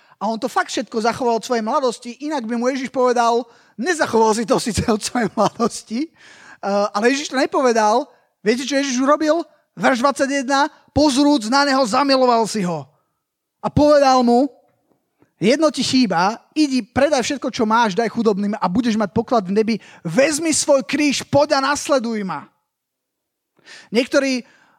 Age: 20-39